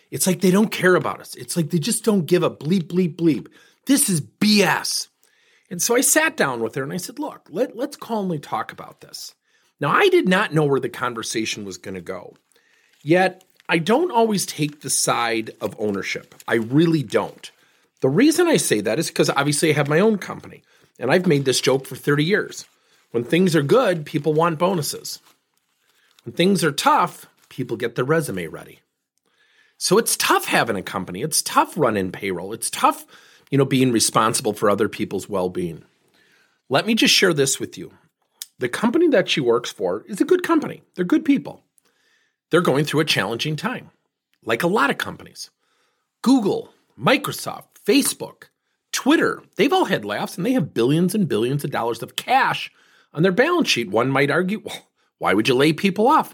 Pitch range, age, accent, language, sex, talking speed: 150-245 Hz, 40-59, American, English, male, 190 wpm